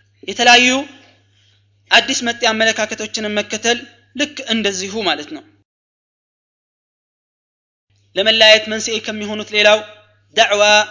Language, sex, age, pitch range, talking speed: Amharic, male, 20-39, 205-260 Hz, 65 wpm